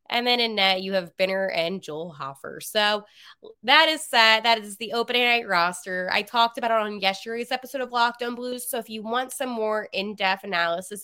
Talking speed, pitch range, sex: 205 wpm, 170-230 Hz, female